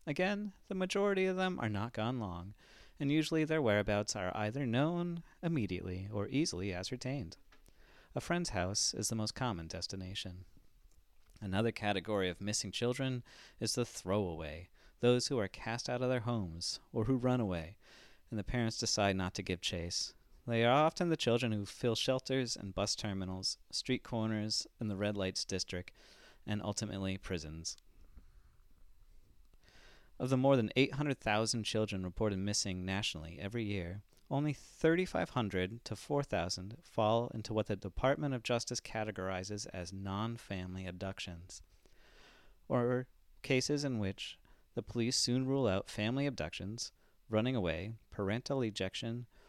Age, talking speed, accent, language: 30-49, 145 wpm, American, English